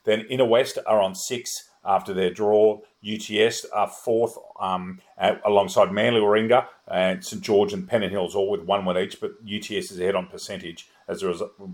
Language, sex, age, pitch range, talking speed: English, male, 40-59, 95-115 Hz, 190 wpm